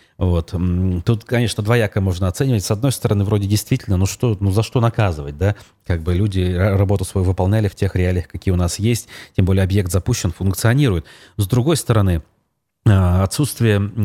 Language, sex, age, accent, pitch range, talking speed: Russian, male, 30-49, native, 90-115 Hz, 170 wpm